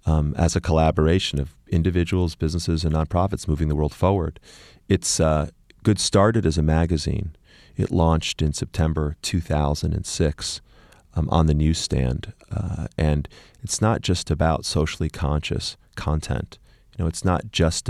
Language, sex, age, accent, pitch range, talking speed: English, male, 40-59, American, 75-95 Hz, 145 wpm